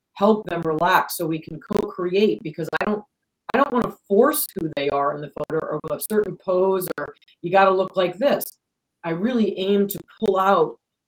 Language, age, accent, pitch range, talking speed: English, 40-59, American, 160-205 Hz, 200 wpm